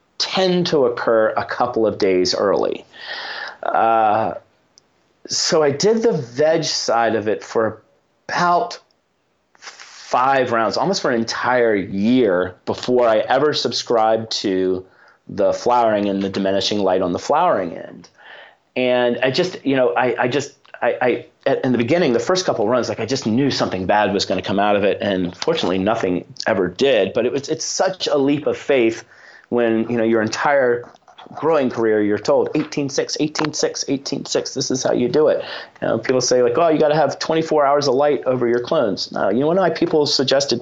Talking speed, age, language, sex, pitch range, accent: 190 wpm, 30-49, English, male, 110-145 Hz, American